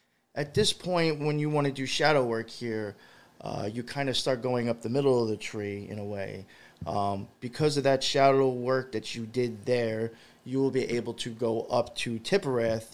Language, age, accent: English, 20-39, American